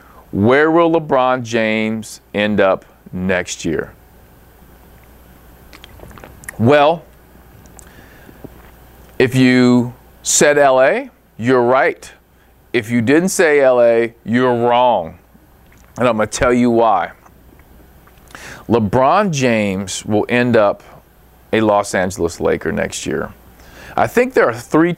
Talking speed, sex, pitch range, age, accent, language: 105 wpm, male, 90-125 Hz, 40-59, American, English